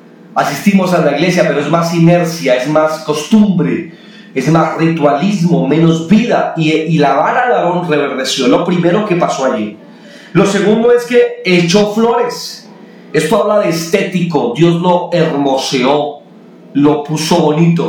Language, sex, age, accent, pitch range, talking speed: Spanish, male, 40-59, Mexican, 155-185 Hz, 145 wpm